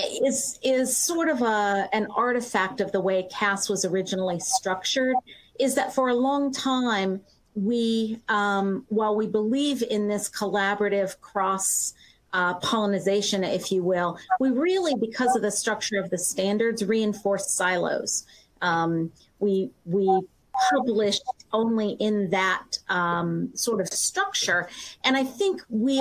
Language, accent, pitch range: English, American, 200-255 Hz